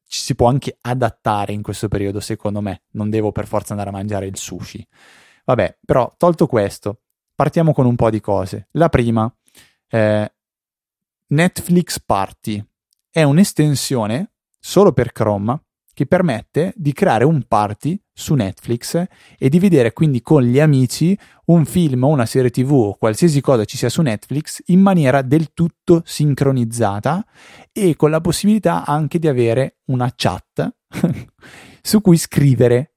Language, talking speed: Italian, 155 wpm